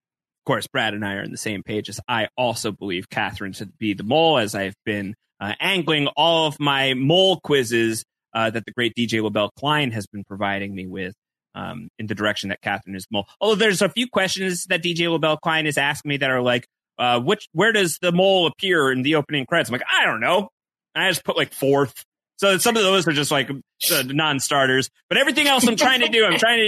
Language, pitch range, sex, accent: English, 120-185 Hz, male, American